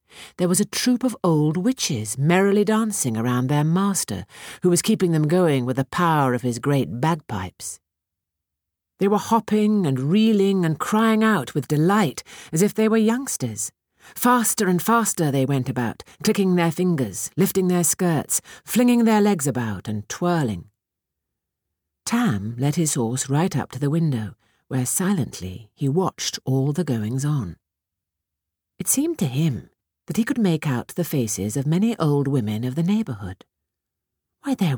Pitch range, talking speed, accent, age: 120-190 Hz, 160 wpm, British, 50-69